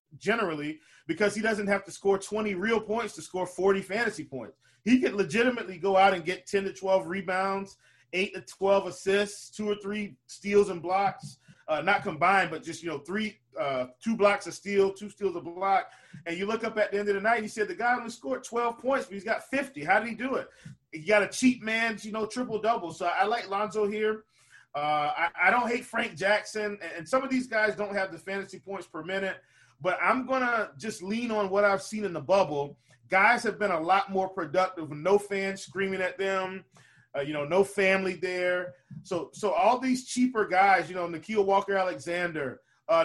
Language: English